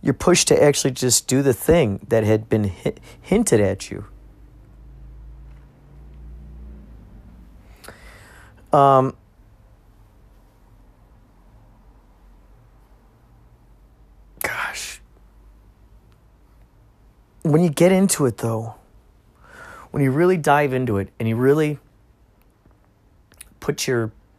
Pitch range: 100-130 Hz